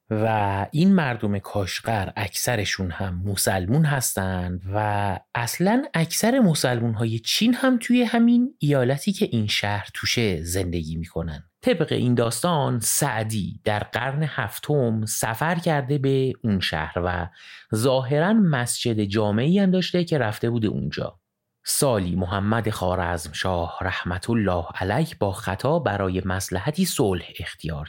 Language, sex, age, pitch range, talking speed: Persian, male, 30-49, 95-150 Hz, 125 wpm